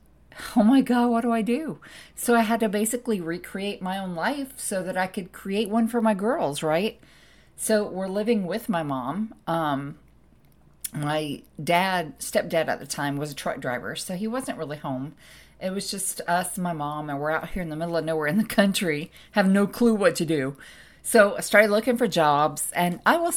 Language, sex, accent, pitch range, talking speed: English, female, American, 155-220 Hz, 210 wpm